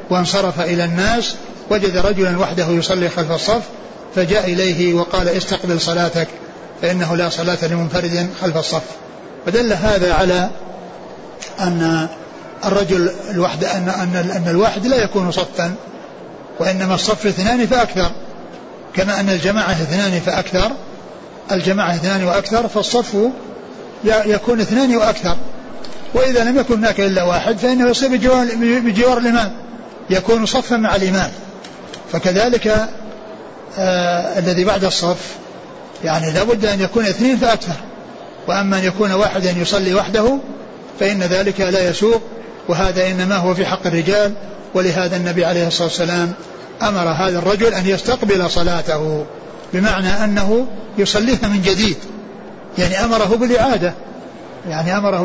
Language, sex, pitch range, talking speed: Arabic, male, 180-220 Hz, 120 wpm